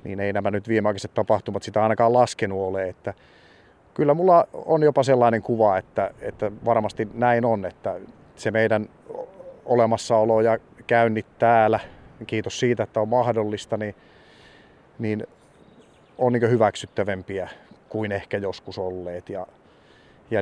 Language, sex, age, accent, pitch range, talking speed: Finnish, male, 30-49, native, 100-115 Hz, 130 wpm